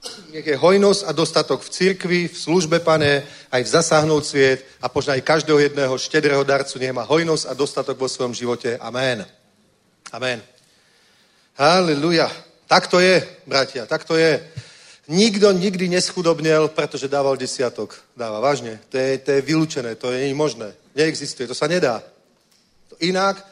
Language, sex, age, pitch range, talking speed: Czech, male, 40-59, 130-165 Hz, 155 wpm